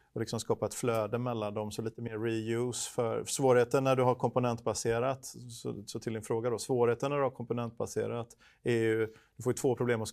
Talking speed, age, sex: 205 wpm, 30-49, male